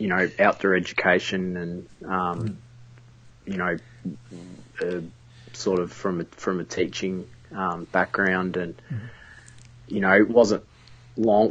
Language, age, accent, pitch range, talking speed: English, 20-39, Australian, 90-120 Hz, 125 wpm